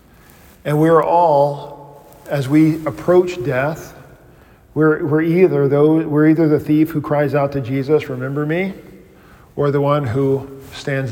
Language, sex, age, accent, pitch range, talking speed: English, male, 40-59, American, 135-165 Hz, 145 wpm